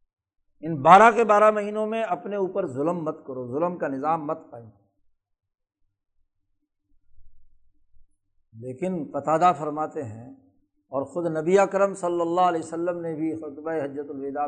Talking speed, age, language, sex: 135 wpm, 60-79, Urdu, male